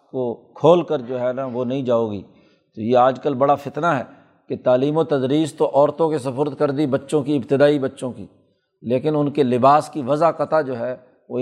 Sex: male